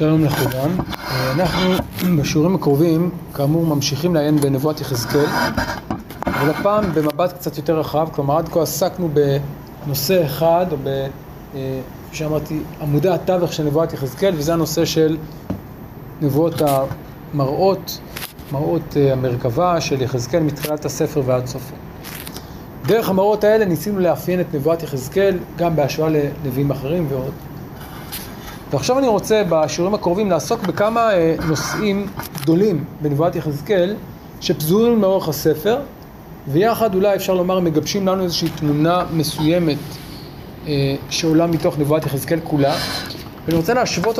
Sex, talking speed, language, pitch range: male, 115 wpm, Hebrew, 145-175 Hz